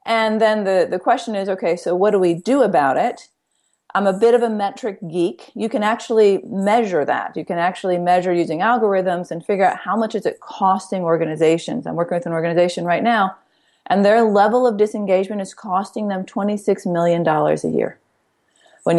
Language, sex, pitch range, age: English, female, 175-215 Hz, 40-59